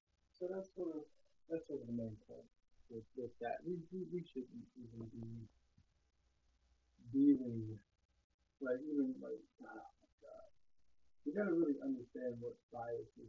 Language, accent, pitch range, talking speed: English, American, 120-160 Hz, 155 wpm